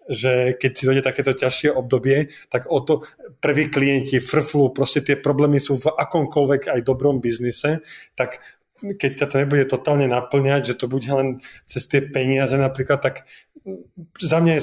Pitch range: 130-145 Hz